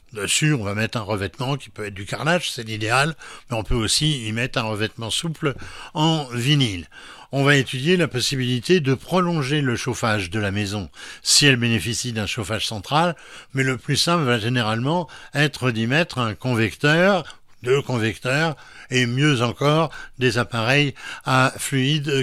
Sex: male